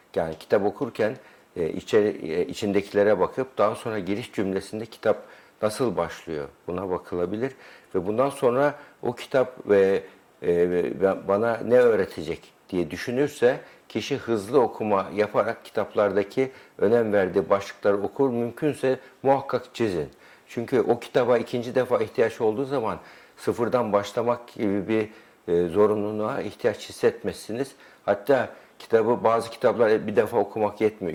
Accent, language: native, Turkish